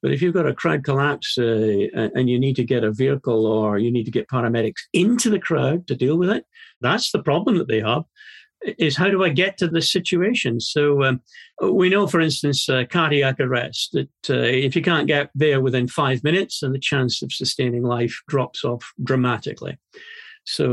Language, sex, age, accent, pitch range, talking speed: English, male, 50-69, British, 125-165 Hz, 205 wpm